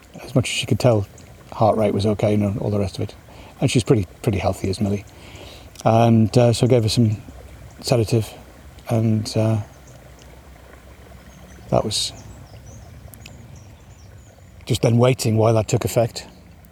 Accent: British